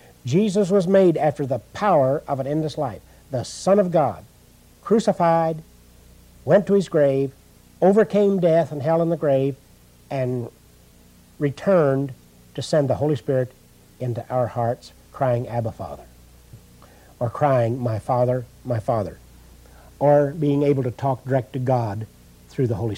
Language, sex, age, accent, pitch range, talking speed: English, male, 60-79, American, 105-170 Hz, 145 wpm